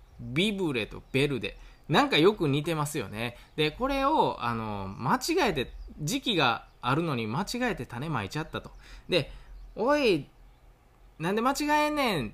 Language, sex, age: Japanese, male, 20-39